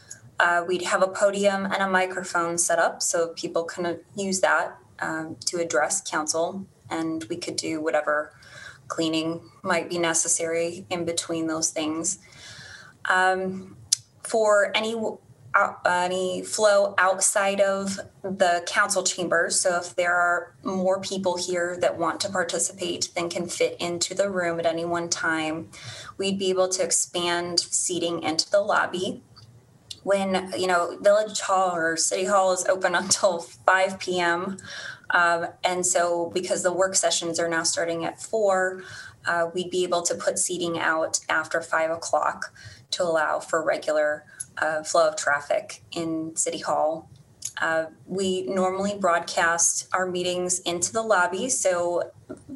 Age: 20-39